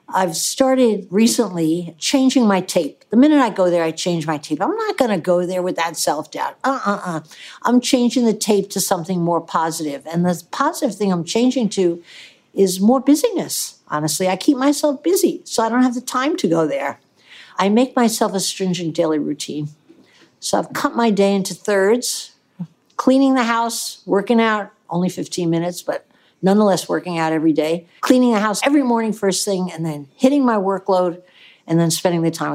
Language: English